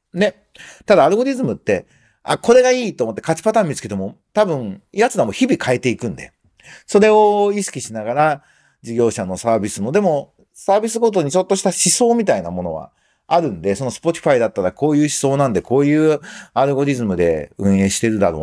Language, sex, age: Japanese, male, 40-59